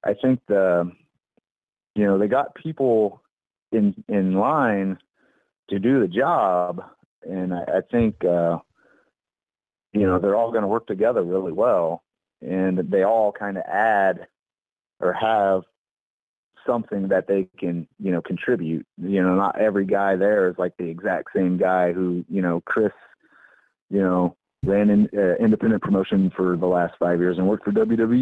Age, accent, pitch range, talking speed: 30-49, American, 90-105 Hz, 165 wpm